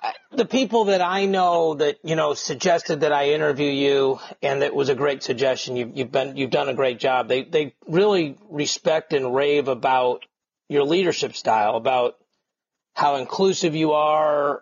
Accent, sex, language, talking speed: American, male, English, 170 wpm